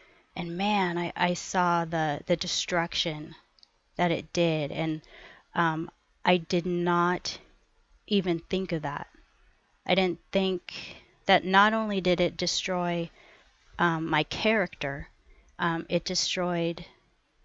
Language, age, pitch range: English, 30-49, 170-195 Hz